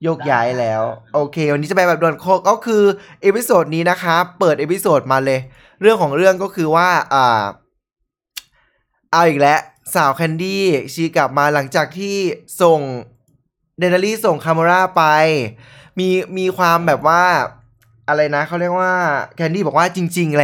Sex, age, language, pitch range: male, 20-39, Thai, 140-180 Hz